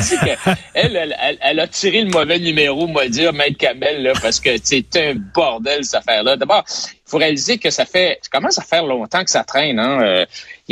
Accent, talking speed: Canadian, 230 wpm